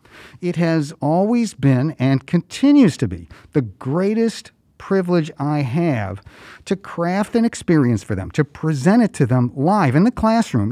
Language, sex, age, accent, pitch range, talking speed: English, male, 50-69, American, 120-175 Hz, 155 wpm